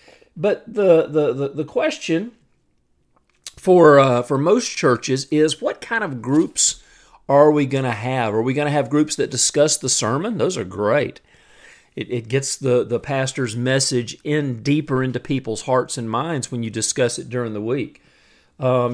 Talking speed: 175 wpm